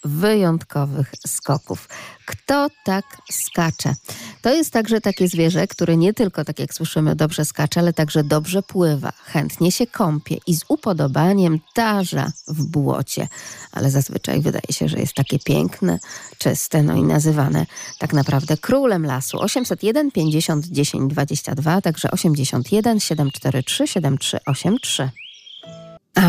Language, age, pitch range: Polish, 40-59, 145-195 Hz